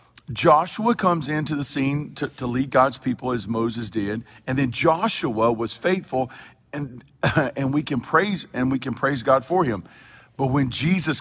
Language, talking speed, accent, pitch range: English, 175 wpm, American, 115-145 Hz